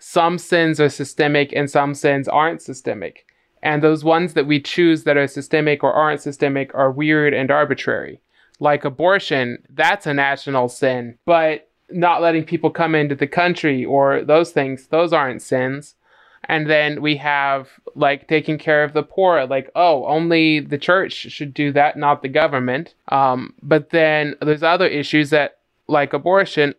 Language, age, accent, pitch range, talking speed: English, 20-39, American, 140-160 Hz, 170 wpm